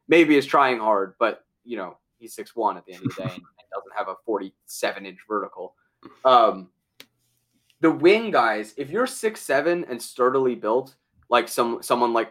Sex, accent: male, American